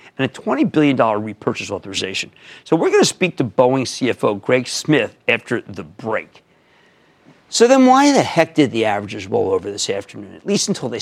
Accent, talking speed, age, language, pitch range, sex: American, 190 wpm, 50-69, English, 115-175 Hz, male